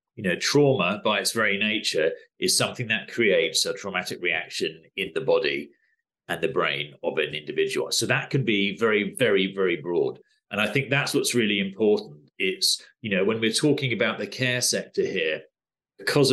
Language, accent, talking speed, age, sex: English, British, 185 wpm, 40-59, male